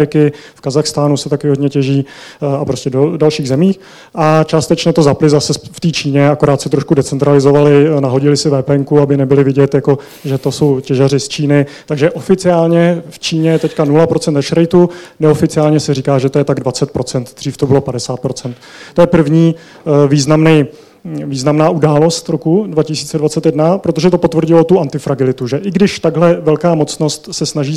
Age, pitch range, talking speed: 30-49, 140-160 Hz, 165 wpm